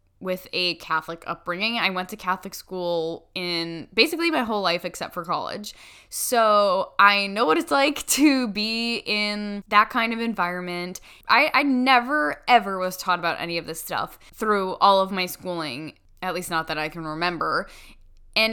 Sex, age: female, 10-29